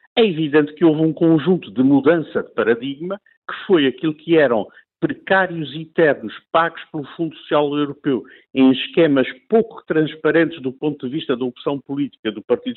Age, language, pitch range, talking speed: 50-69, Portuguese, 145-195 Hz, 170 wpm